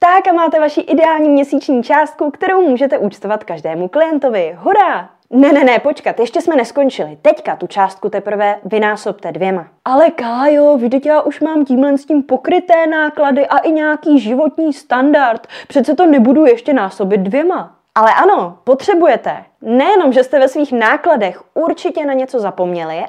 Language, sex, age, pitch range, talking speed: Czech, female, 20-39, 215-295 Hz, 155 wpm